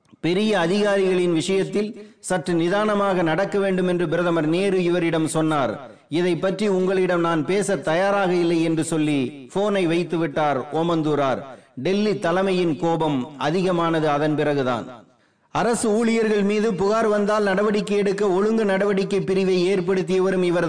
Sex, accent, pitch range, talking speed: male, native, 175-205 Hz, 50 wpm